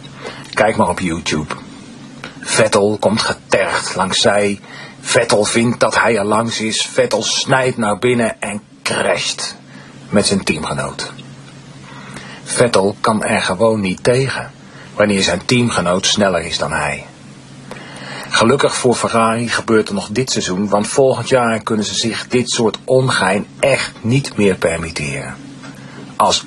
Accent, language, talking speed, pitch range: Dutch, Dutch, 135 wpm, 95-125 Hz